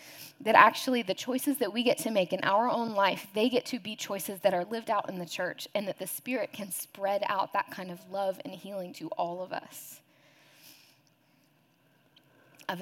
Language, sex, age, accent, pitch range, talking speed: English, female, 10-29, American, 165-200 Hz, 200 wpm